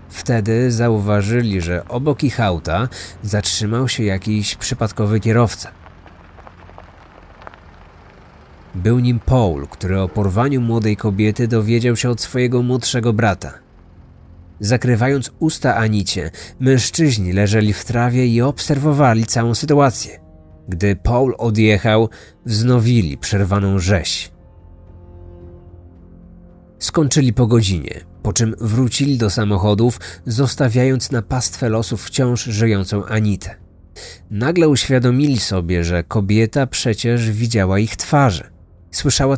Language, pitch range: Polish, 90-125 Hz